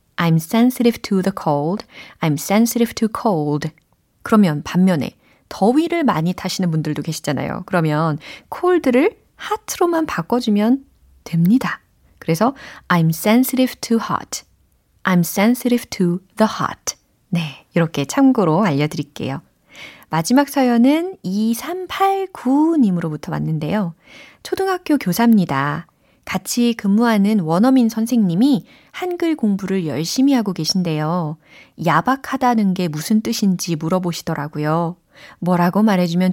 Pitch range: 165-245 Hz